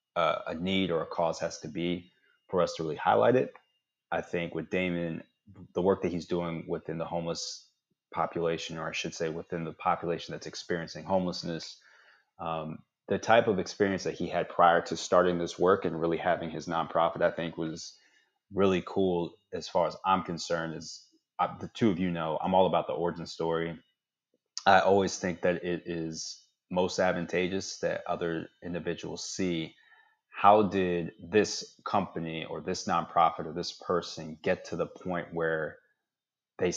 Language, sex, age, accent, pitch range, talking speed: English, male, 30-49, American, 80-90 Hz, 170 wpm